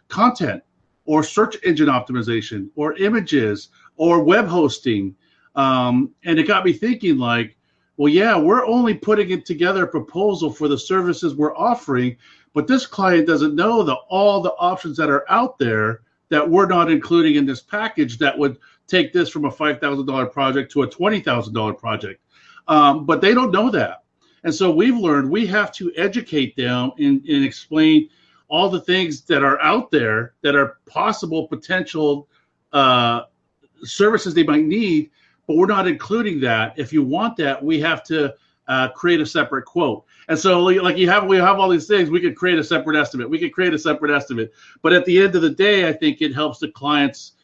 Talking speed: 190 wpm